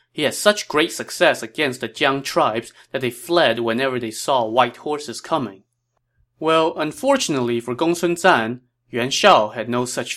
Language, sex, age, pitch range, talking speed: English, male, 20-39, 115-150 Hz, 165 wpm